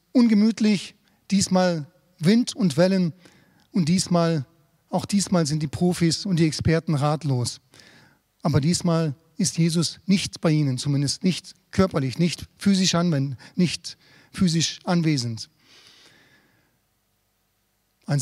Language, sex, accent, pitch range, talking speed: German, male, German, 140-180 Hz, 100 wpm